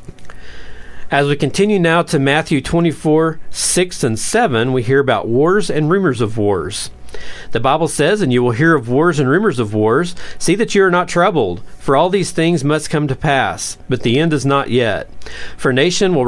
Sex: male